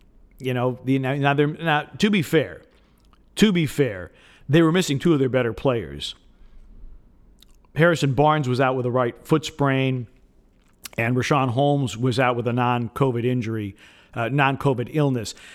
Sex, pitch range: male, 125-150 Hz